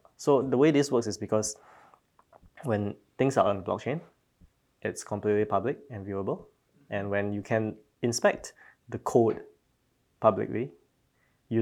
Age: 20-39